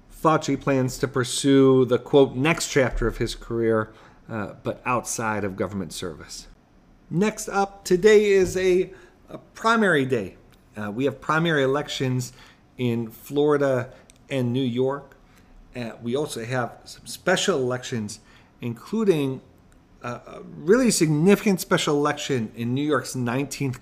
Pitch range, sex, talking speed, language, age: 120-145 Hz, male, 130 wpm, English, 40-59